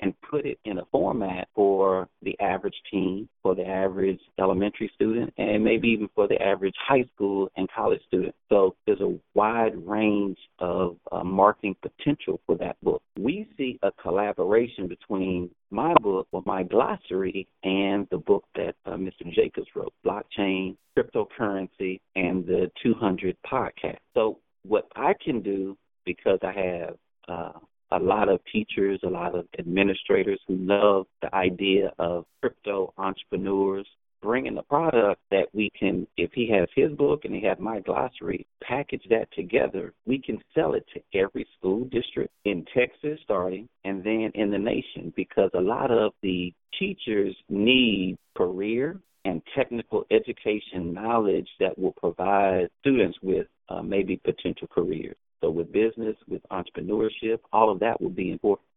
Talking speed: 155 wpm